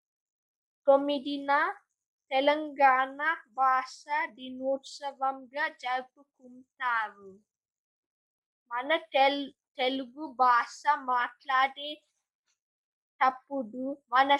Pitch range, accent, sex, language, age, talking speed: 255-300 Hz, native, female, Telugu, 20-39, 50 wpm